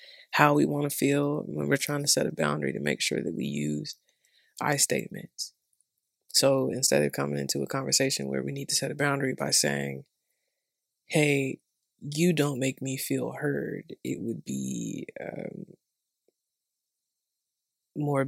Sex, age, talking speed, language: female, 20-39, 160 wpm, English